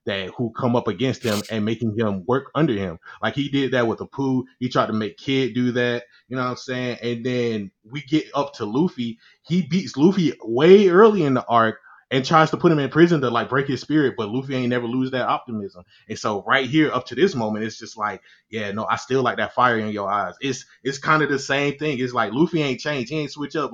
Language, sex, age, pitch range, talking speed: English, male, 20-39, 110-140 Hz, 260 wpm